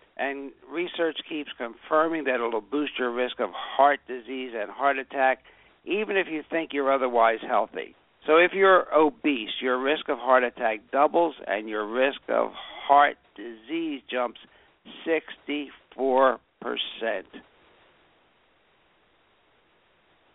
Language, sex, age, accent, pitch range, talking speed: English, male, 60-79, American, 115-145 Hz, 120 wpm